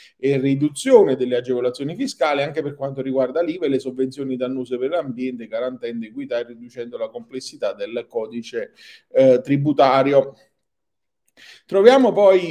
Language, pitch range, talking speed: Italian, 125-150 Hz, 135 wpm